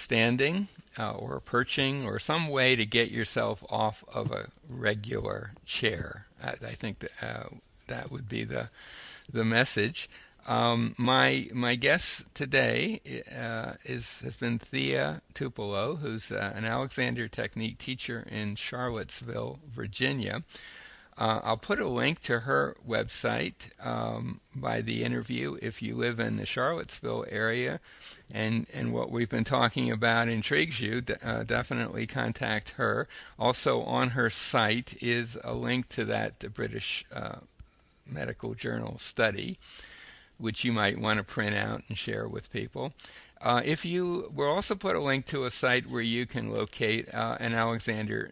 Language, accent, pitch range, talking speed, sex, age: English, American, 105-125 Hz, 150 wpm, male, 60-79